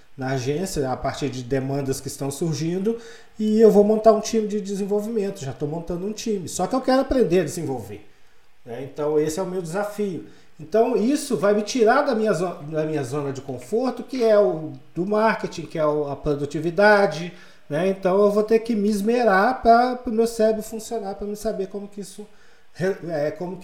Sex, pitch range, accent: male, 150-210 Hz, Brazilian